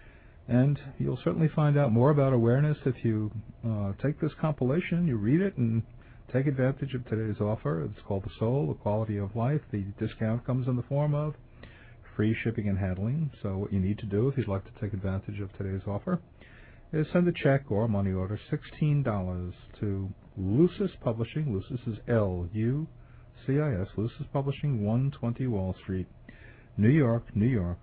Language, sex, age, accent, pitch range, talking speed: English, male, 50-69, American, 100-130 Hz, 175 wpm